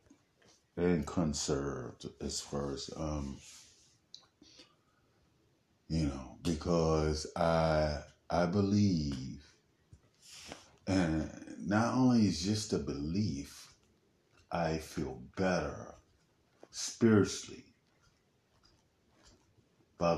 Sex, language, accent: male, English, American